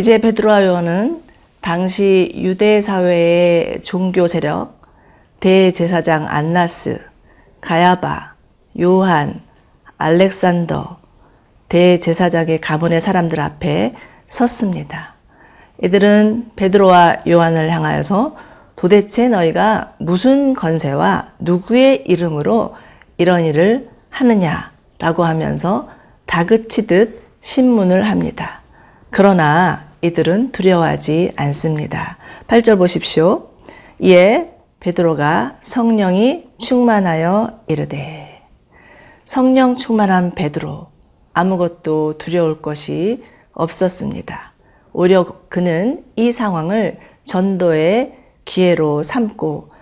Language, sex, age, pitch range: Korean, female, 40-59, 170-220 Hz